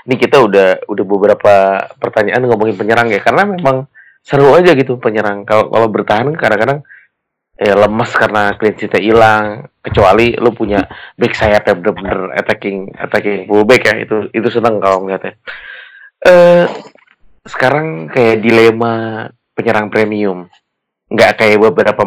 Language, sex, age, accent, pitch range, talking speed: Indonesian, male, 30-49, native, 105-125 Hz, 130 wpm